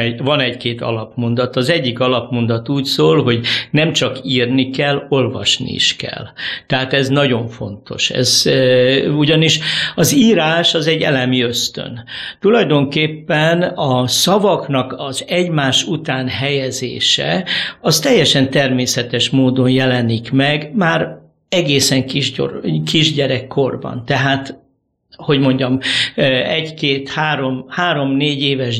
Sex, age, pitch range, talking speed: male, 60-79, 130-165 Hz, 110 wpm